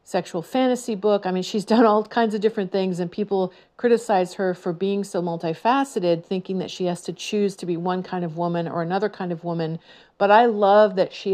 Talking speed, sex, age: 220 wpm, female, 50-69